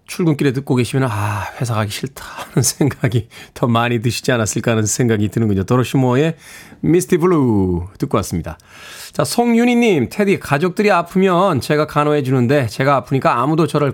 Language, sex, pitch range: Korean, male, 115-165 Hz